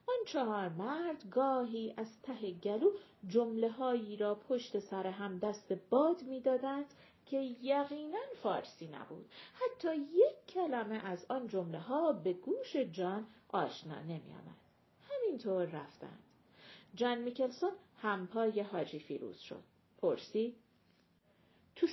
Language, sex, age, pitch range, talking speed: Persian, female, 50-69, 210-305 Hz, 110 wpm